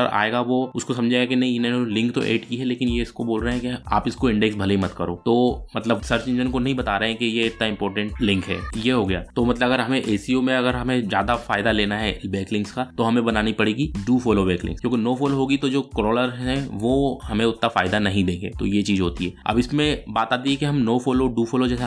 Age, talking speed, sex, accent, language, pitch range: 20-39, 115 wpm, male, native, Hindi, 110-130 Hz